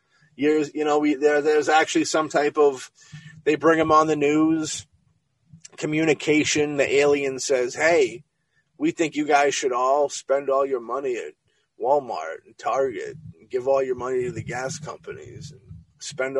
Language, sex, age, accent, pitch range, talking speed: English, male, 30-49, American, 135-160 Hz, 170 wpm